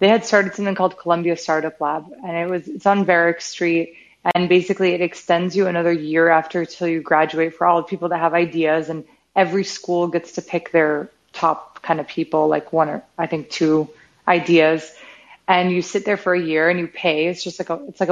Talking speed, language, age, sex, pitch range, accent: 220 wpm, English, 20-39, female, 165-190 Hz, American